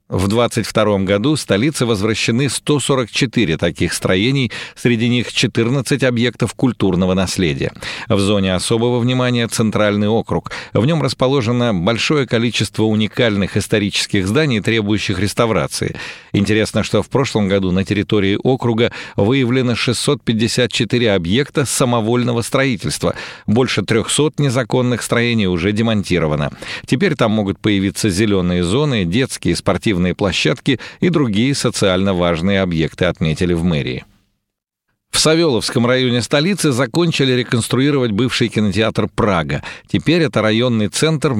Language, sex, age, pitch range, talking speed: Russian, male, 50-69, 100-125 Hz, 115 wpm